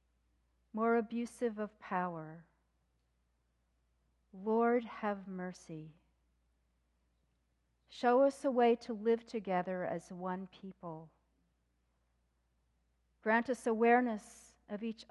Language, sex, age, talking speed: English, female, 50-69, 85 wpm